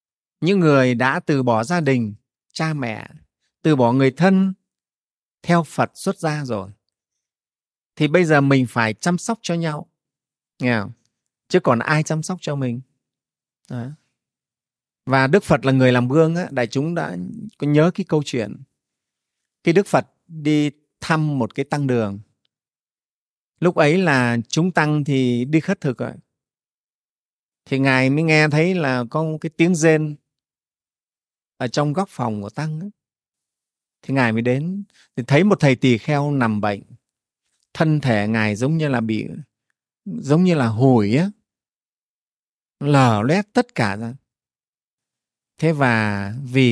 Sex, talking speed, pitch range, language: male, 150 wpm, 120-160 Hz, Vietnamese